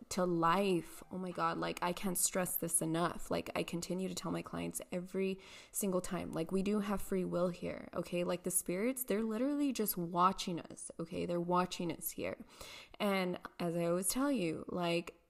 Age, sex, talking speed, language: 20-39, female, 190 wpm, English